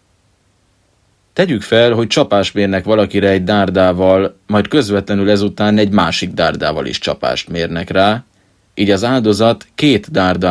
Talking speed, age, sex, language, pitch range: 130 wpm, 30-49, male, Hungarian, 95-105 Hz